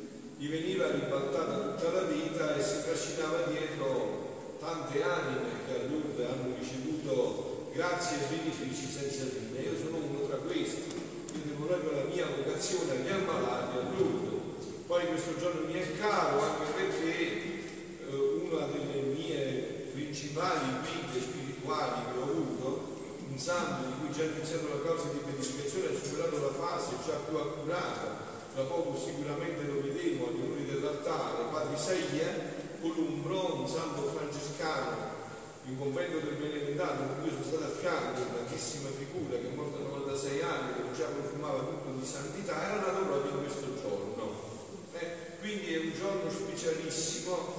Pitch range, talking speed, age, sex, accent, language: 145-175 Hz, 155 wpm, 40-59, male, native, Italian